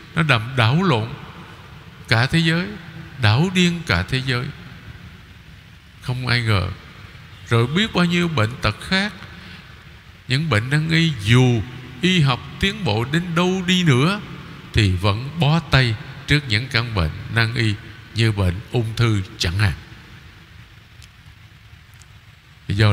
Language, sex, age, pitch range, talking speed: Vietnamese, male, 50-69, 105-160 Hz, 135 wpm